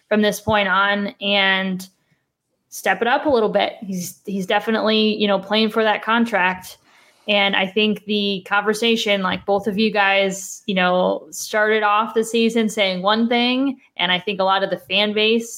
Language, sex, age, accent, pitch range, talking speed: English, female, 20-39, American, 185-230 Hz, 185 wpm